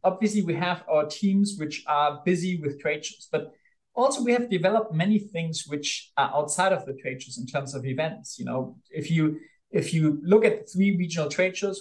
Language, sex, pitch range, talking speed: English, male, 145-190 Hz, 215 wpm